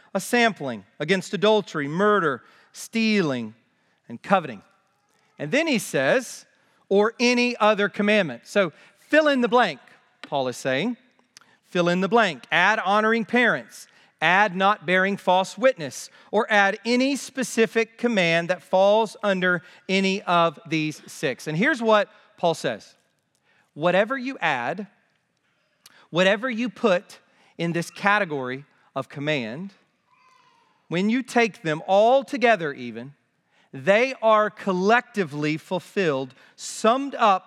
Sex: male